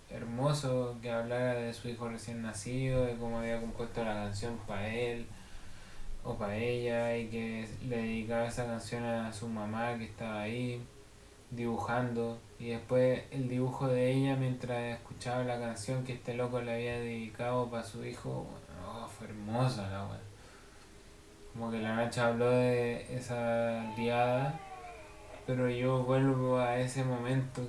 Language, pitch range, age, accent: English, 110-130 Hz, 20-39, Argentinian